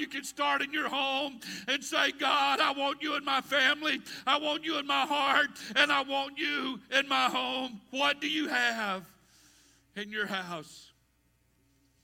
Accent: American